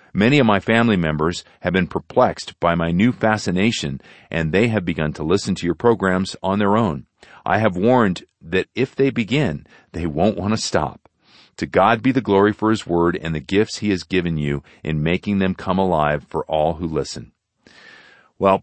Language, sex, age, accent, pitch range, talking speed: English, male, 40-59, American, 85-105 Hz, 195 wpm